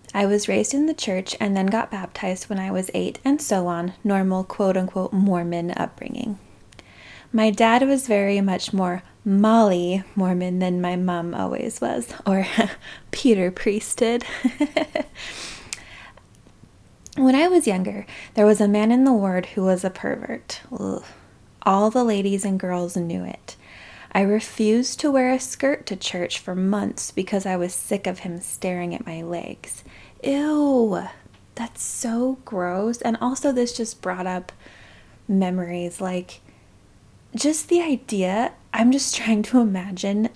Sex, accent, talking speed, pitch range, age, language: female, American, 150 wpm, 180-230 Hz, 20-39, English